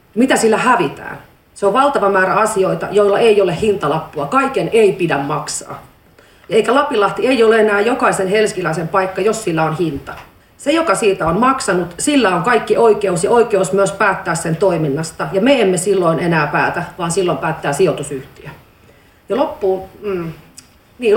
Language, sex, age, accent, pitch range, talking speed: Finnish, female, 40-59, native, 170-225 Hz, 160 wpm